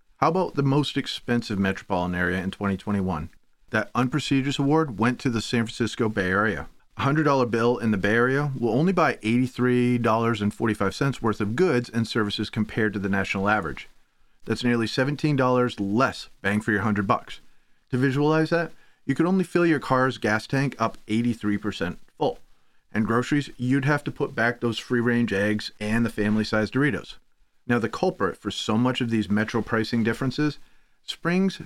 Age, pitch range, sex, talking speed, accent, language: 40-59, 105-130 Hz, male, 175 wpm, American, English